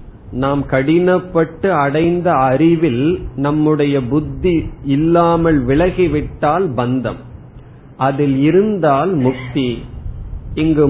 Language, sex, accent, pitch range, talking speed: Tamil, male, native, 125-165 Hz, 70 wpm